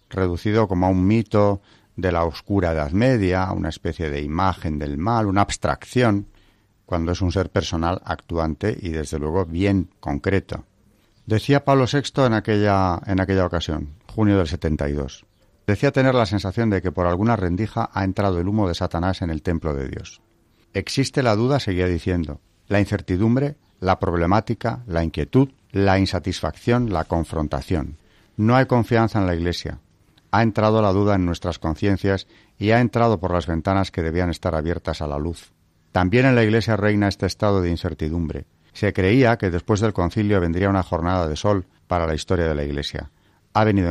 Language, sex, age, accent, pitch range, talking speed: Spanish, male, 40-59, Spanish, 85-105 Hz, 175 wpm